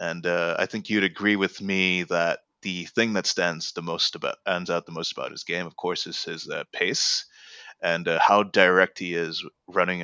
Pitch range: 90-125 Hz